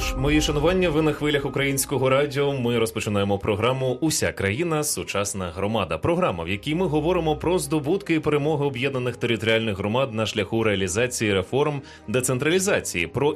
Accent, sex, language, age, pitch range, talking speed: native, male, Ukrainian, 20-39, 105-150 Hz, 150 wpm